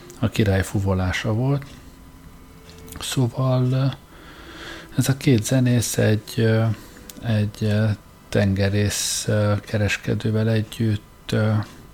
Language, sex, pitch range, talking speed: Hungarian, male, 105-120 Hz, 70 wpm